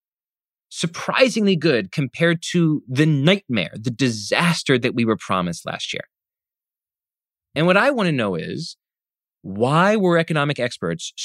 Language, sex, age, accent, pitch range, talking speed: English, male, 30-49, American, 115-170 Hz, 130 wpm